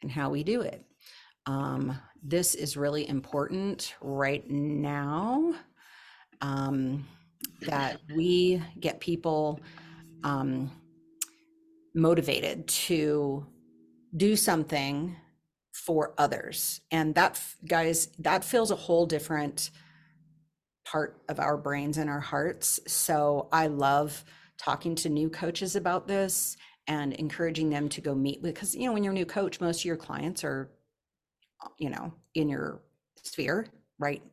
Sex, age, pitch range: female, 40-59, 140-165 Hz